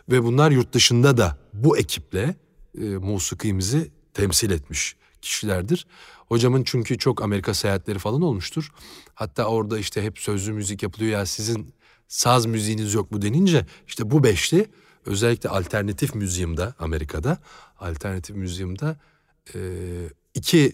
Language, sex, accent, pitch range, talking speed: Turkish, male, native, 90-130 Hz, 125 wpm